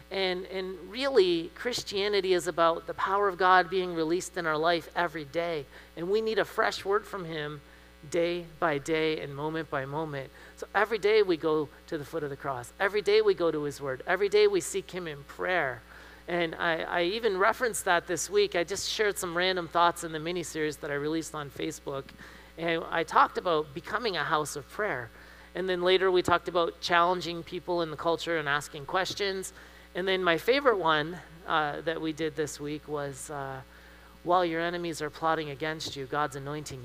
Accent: American